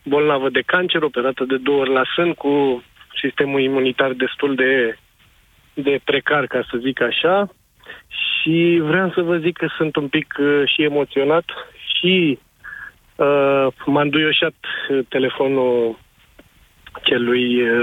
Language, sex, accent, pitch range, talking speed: Romanian, male, native, 135-165 Hz, 120 wpm